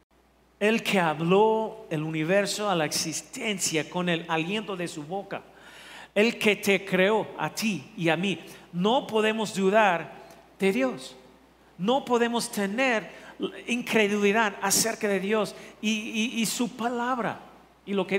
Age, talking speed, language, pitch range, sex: 50-69, 140 wpm, Spanish, 180-220 Hz, male